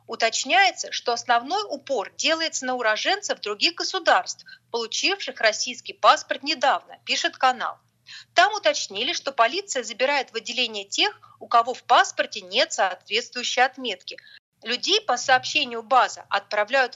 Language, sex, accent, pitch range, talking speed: Russian, female, native, 225-325 Hz, 125 wpm